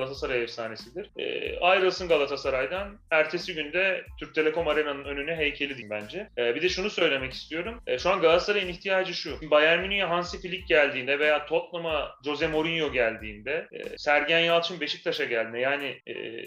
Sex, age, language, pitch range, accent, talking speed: male, 30-49, Turkish, 155-215 Hz, native, 155 wpm